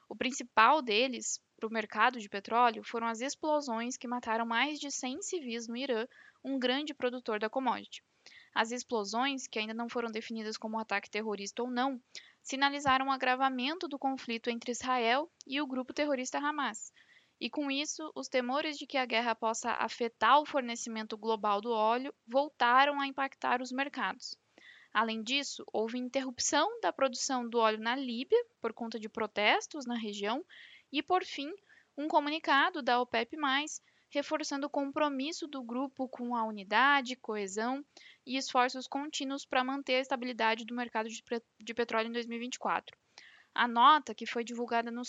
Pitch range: 230-280 Hz